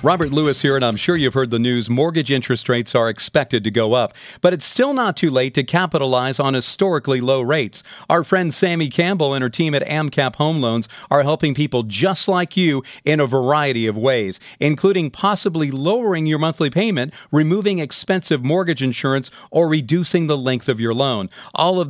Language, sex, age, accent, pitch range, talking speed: English, male, 40-59, American, 135-180 Hz, 195 wpm